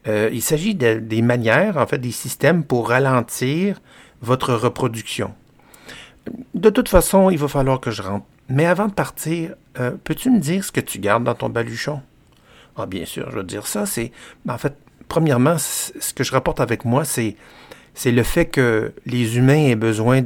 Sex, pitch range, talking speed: male, 110-135 Hz, 195 wpm